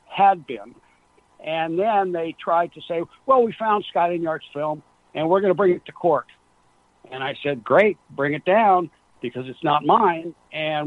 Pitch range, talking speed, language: 150-185 Hz, 190 wpm, English